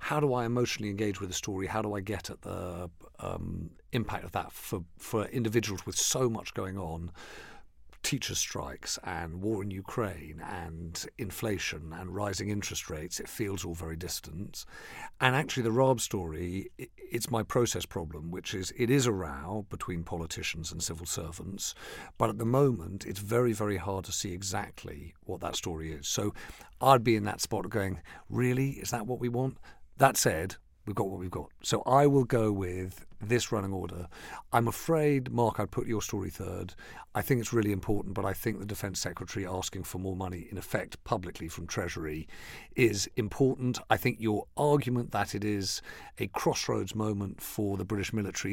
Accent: British